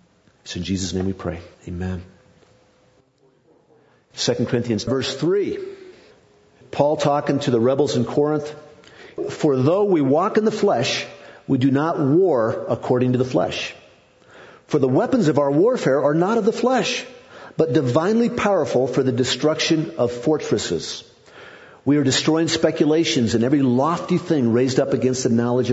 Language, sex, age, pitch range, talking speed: English, male, 50-69, 115-150 Hz, 150 wpm